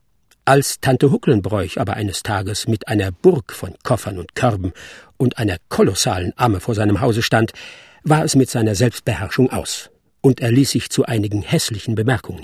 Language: German